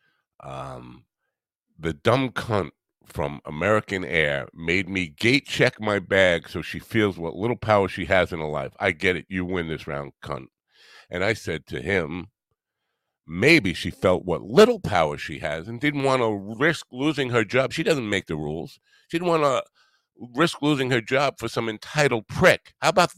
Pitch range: 90-130 Hz